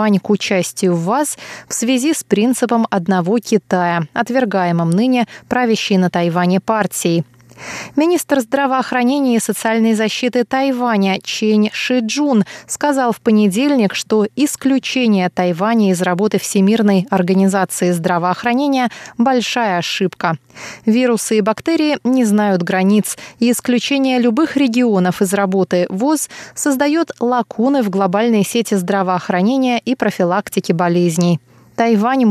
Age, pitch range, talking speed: 20-39, 190-240 Hz, 115 wpm